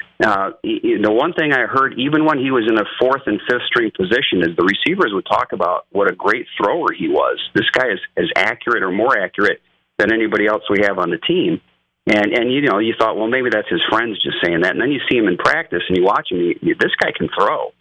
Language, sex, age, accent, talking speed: English, male, 40-59, American, 260 wpm